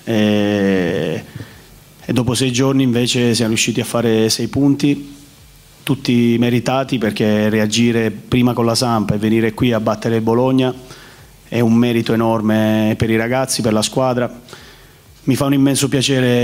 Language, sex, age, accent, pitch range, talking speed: Italian, male, 30-49, native, 115-125 Hz, 150 wpm